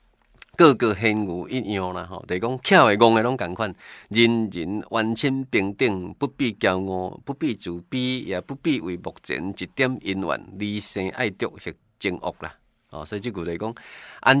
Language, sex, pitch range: Chinese, male, 95-125 Hz